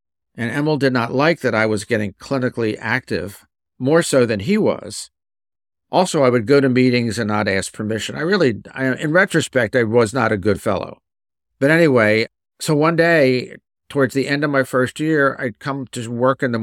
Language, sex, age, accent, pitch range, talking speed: English, male, 50-69, American, 100-130 Hz, 195 wpm